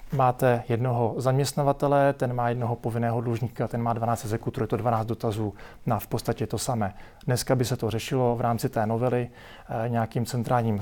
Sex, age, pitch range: male, 40-59, 115-135 Hz